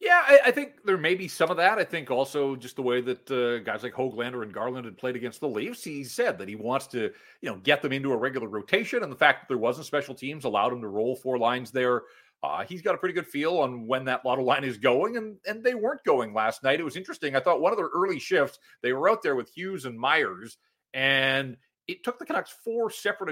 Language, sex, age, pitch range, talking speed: English, male, 40-59, 125-190 Hz, 265 wpm